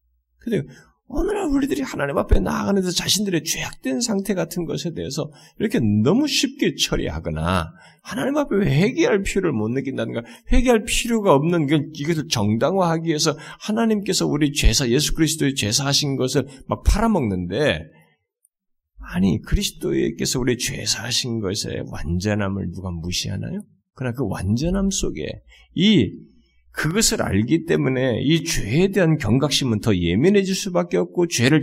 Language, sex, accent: Korean, male, native